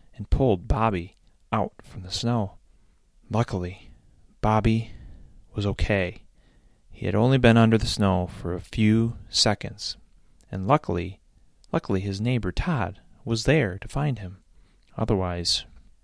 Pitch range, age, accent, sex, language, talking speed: 90-115 Hz, 30-49, American, male, English, 125 wpm